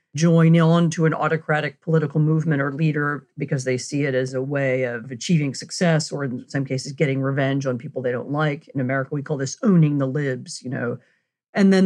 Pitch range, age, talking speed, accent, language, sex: 150-180 Hz, 40-59, 215 wpm, American, English, female